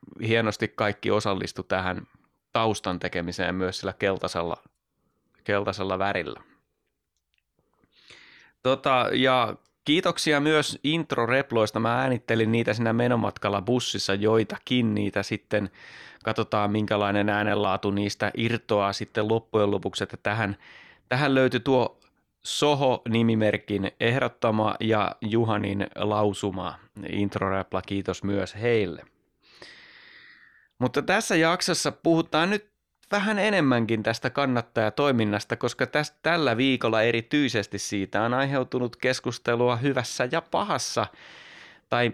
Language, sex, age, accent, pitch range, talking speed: Finnish, male, 30-49, native, 100-130 Hz, 100 wpm